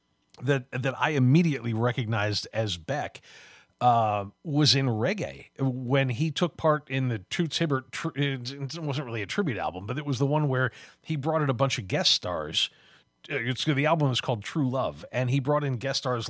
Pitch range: 125-155 Hz